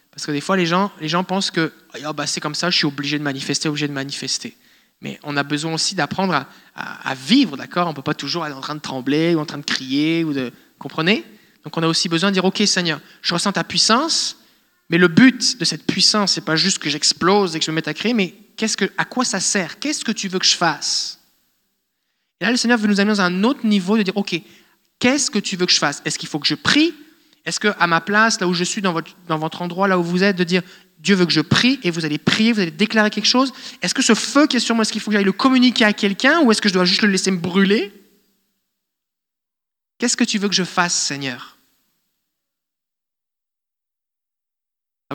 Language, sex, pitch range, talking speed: French, male, 160-210 Hz, 260 wpm